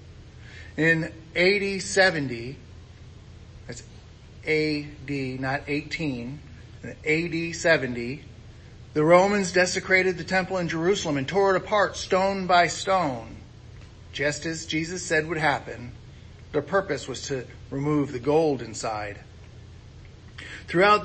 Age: 40-59